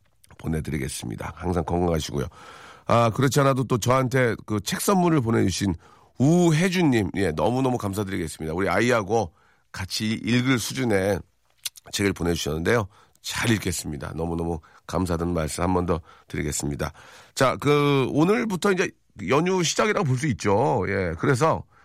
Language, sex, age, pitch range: Korean, male, 40-59, 95-155 Hz